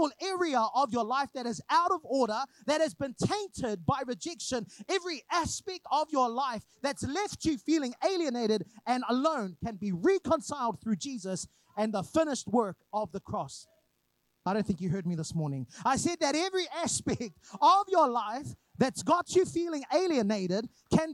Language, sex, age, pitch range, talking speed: English, male, 30-49, 190-305 Hz, 175 wpm